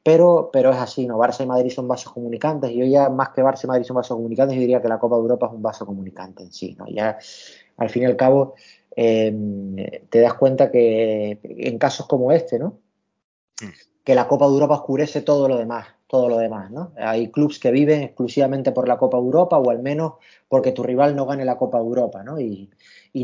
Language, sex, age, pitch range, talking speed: Spanish, male, 20-39, 115-145 Hz, 230 wpm